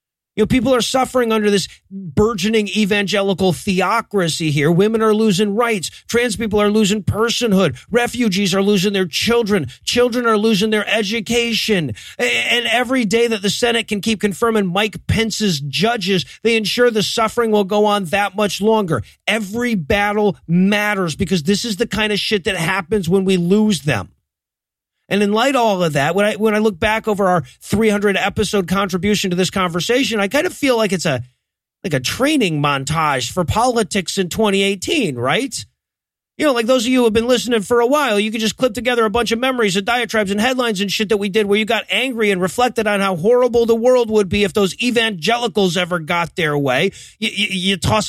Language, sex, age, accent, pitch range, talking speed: English, male, 40-59, American, 190-230 Hz, 195 wpm